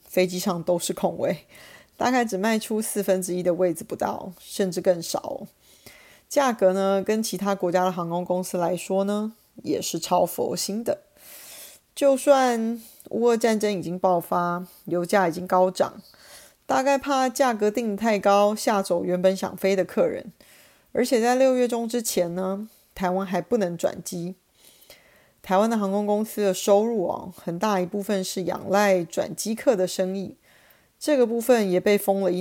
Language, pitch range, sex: Chinese, 185-225 Hz, female